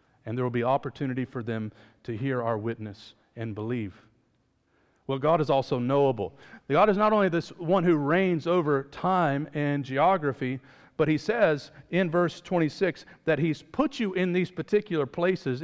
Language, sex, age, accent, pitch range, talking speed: English, male, 40-59, American, 130-175 Hz, 170 wpm